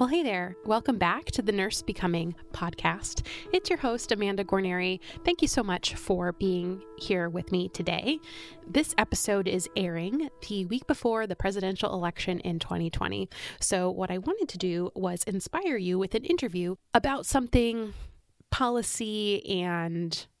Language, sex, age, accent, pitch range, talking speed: English, female, 20-39, American, 180-230 Hz, 155 wpm